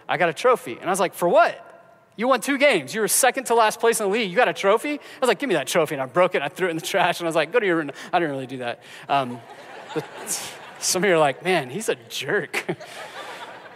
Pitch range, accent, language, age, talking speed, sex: 145-195 Hz, American, English, 30-49, 300 wpm, male